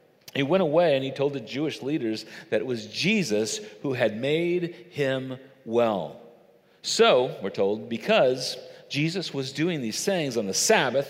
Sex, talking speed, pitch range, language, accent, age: male, 160 wpm, 125-195 Hz, English, American, 40-59